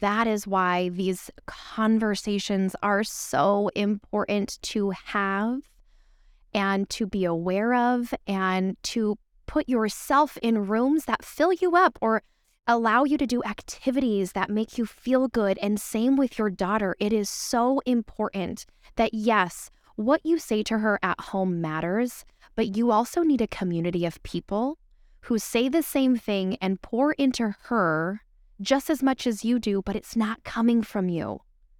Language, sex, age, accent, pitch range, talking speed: English, female, 10-29, American, 195-255 Hz, 160 wpm